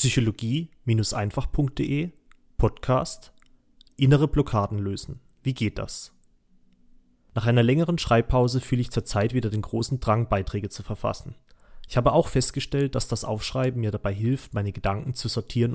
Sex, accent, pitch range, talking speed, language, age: male, German, 105-130 Hz, 140 wpm, German, 30-49